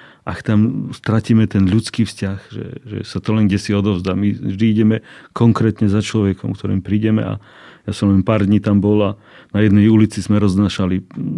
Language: Slovak